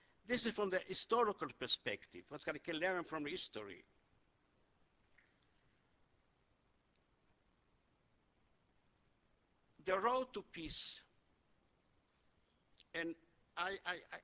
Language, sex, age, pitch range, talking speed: English, male, 60-79, 135-190 Hz, 75 wpm